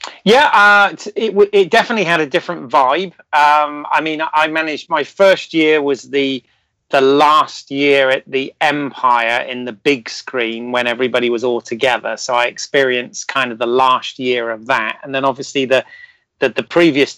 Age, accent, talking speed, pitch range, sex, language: 30-49, British, 180 wpm, 135-165 Hz, male, English